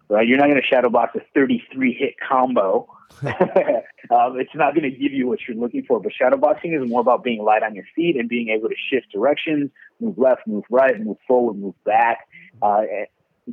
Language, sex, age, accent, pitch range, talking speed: English, male, 30-49, American, 115-160 Hz, 205 wpm